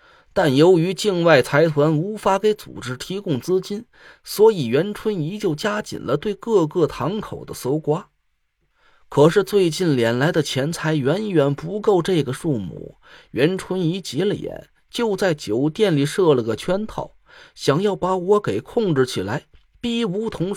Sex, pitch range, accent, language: male, 150-210 Hz, native, Chinese